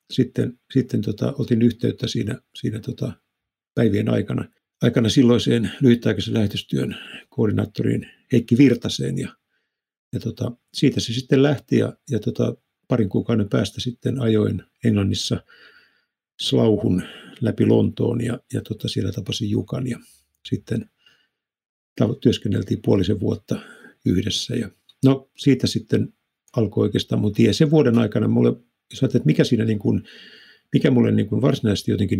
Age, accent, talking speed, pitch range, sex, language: 50-69, native, 130 wpm, 105-125 Hz, male, Finnish